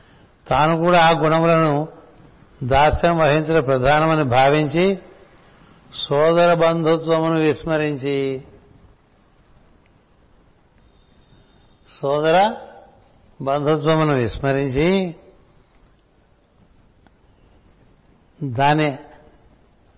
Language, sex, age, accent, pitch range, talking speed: Telugu, male, 60-79, native, 140-165 Hz, 45 wpm